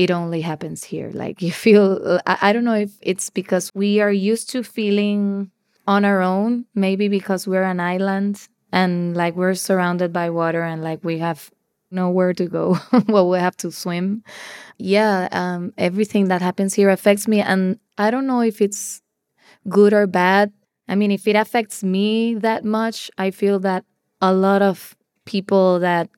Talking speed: 175 wpm